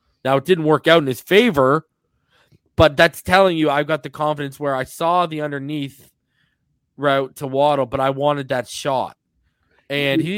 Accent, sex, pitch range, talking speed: American, male, 130-155 Hz, 180 wpm